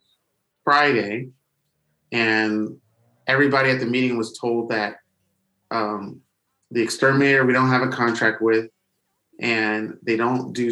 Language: English